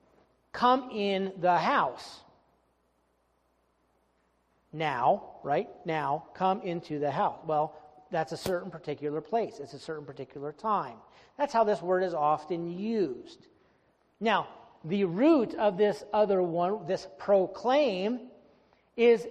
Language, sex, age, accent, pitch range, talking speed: English, male, 40-59, American, 155-220 Hz, 120 wpm